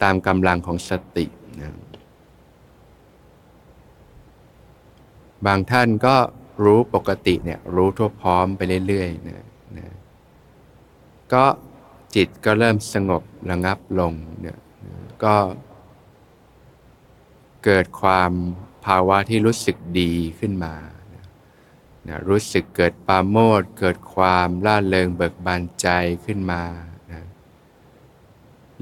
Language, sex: Thai, male